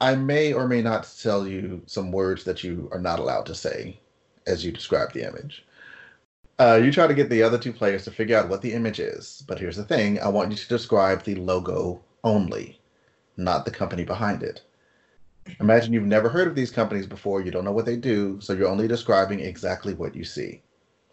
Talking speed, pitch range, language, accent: 215 wpm, 95-115 Hz, English, American